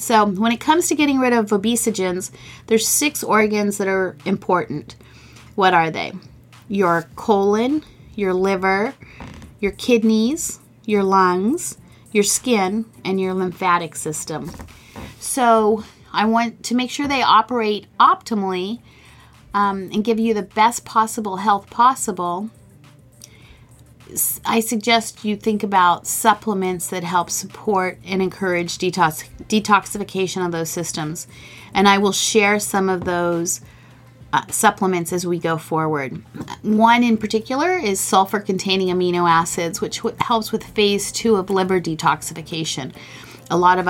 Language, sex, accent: English, female, American